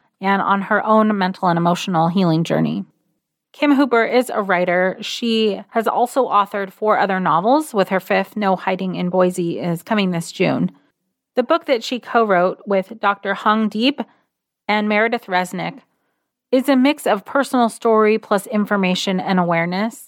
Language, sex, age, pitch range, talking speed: English, female, 30-49, 185-225 Hz, 160 wpm